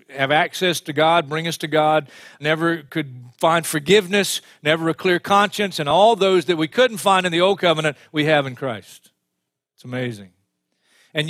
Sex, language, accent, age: male, English, American, 40-59